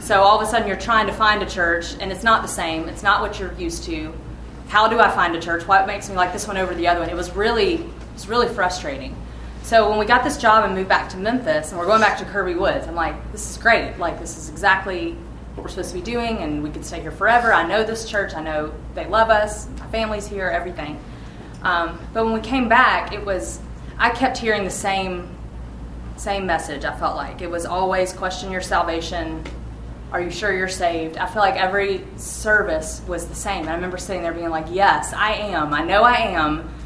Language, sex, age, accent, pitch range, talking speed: English, female, 30-49, American, 165-200 Hz, 240 wpm